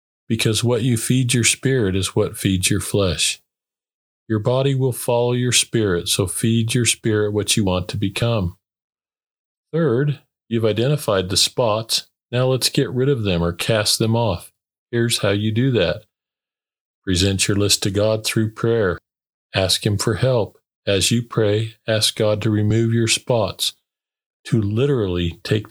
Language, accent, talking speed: English, American, 160 wpm